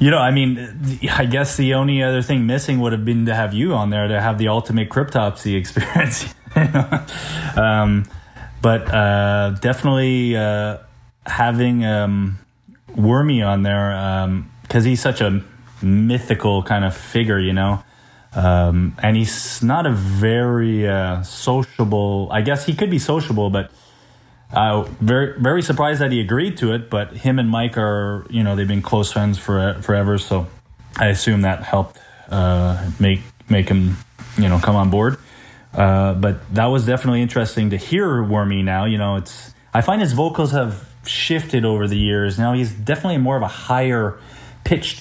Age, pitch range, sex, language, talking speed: 20-39, 100-125 Hz, male, English, 170 wpm